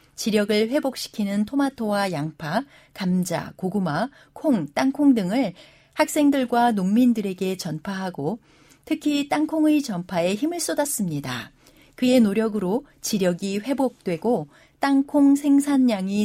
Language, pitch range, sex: Korean, 175-250 Hz, female